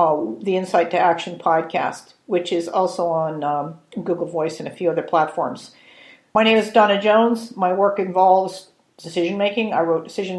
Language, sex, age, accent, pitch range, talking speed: English, female, 50-69, American, 180-220 Hz, 175 wpm